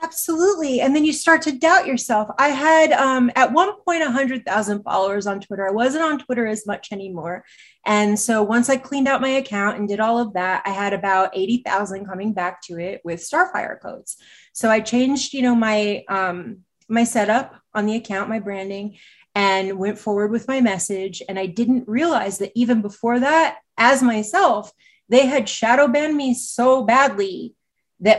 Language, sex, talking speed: English, female, 185 wpm